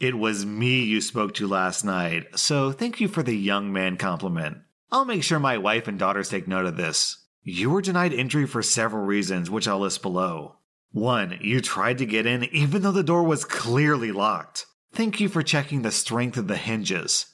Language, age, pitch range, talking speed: English, 30-49, 105-145 Hz, 210 wpm